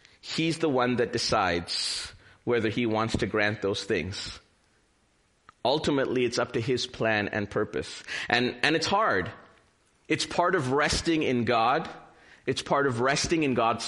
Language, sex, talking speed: English, male, 155 wpm